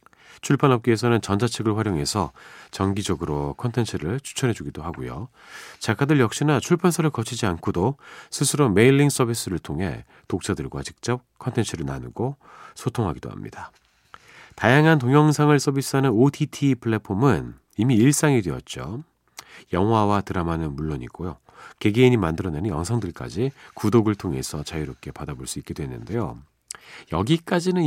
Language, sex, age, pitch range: Korean, male, 40-59, 95-140 Hz